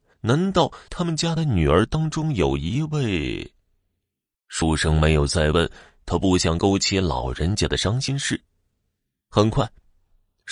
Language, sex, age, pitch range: Chinese, male, 30-49, 85-120 Hz